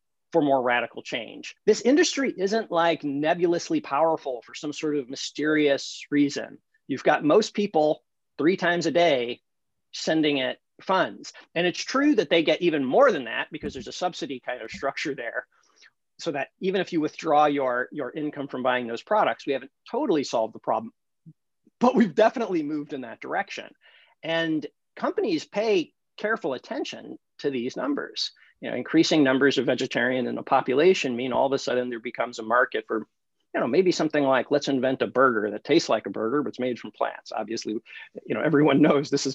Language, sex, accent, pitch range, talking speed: English, male, American, 135-195 Hz, 190 wpm